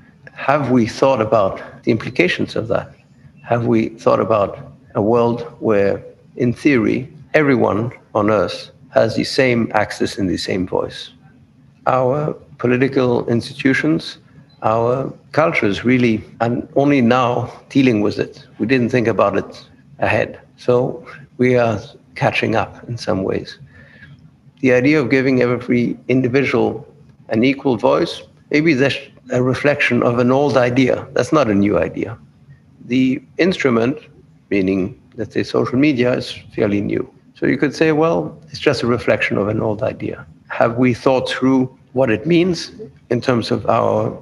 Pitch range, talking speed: 115-135 Hz, 150 wpm